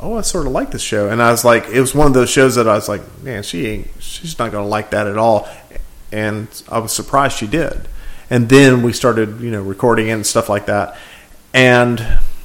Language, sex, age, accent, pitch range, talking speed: English, male, 40-59, American, 110-135 Hz, 240 wpm